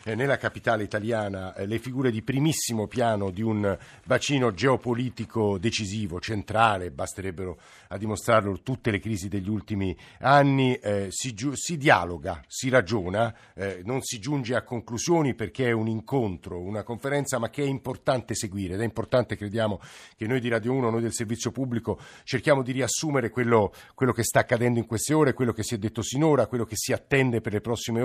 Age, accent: 50-69, native